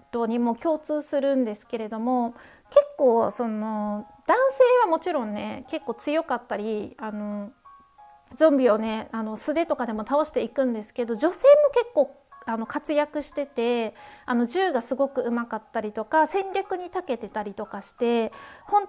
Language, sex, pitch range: Japanese, female, 225-315 Hz